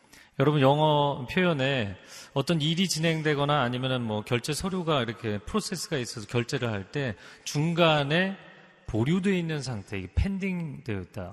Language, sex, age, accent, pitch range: Korean, male, 30-49, native, 125-185 Hz